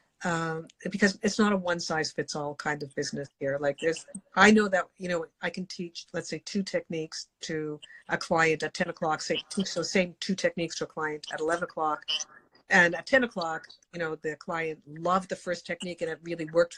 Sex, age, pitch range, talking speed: female, 50-69, 160-210 Hz, 205 wpm